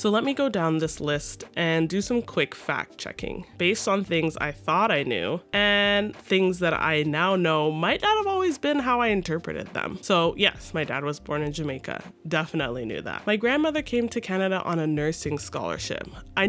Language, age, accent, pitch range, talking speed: English, 20-39, American, 155-195 Hz, 205 wpm